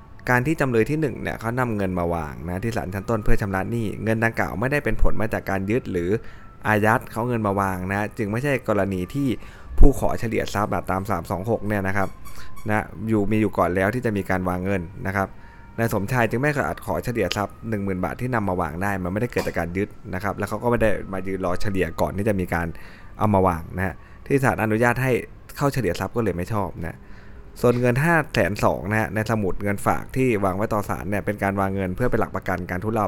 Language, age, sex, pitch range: Thai, 20-39, male, 95-115 Hz